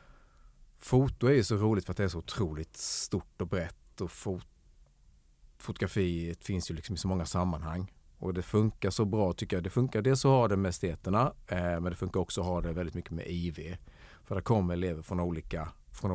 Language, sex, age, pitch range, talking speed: Swedish, male, 30-49, 80-100 Hz, 210 wpm